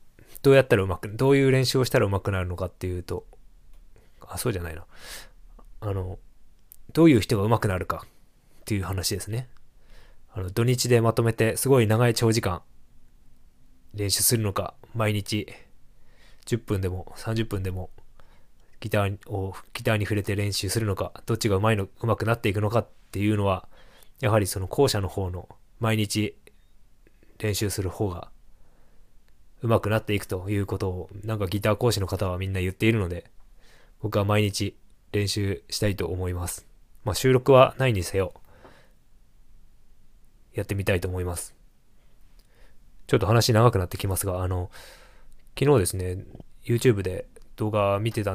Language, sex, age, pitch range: Japanese, male, 20-39, 95-115 Hz